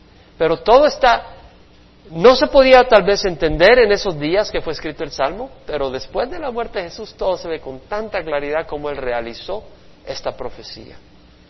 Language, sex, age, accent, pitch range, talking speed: Spanish, male, 50-69, Mexican, 135-200 Hz, 185 wpm